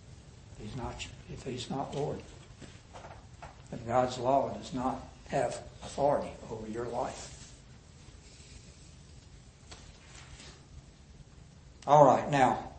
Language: English